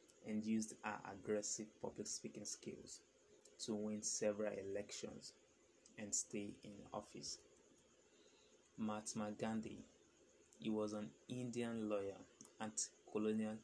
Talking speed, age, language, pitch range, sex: 100 wpm, 20-39, English, 105-120 Hz, male